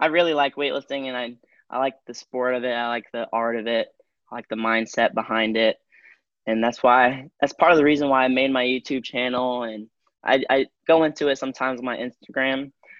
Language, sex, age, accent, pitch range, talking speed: English, male, 10-29, American, 120-140 Hz, 220 wpm